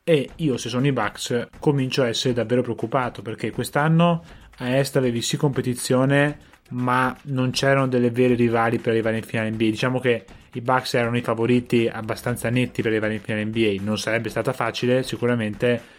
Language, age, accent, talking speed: Italian, 20-39, native, 180 wpm